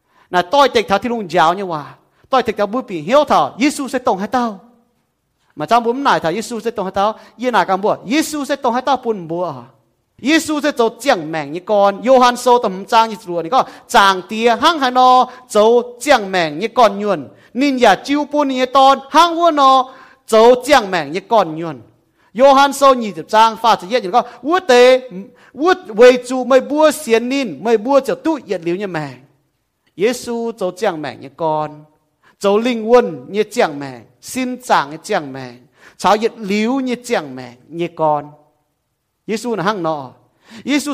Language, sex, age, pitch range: English, male, 30-49, 160-255 Hz